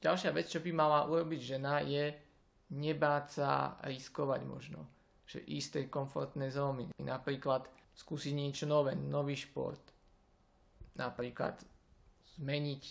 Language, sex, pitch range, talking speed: Slovak, male, 135-150 Hz, 120 wpm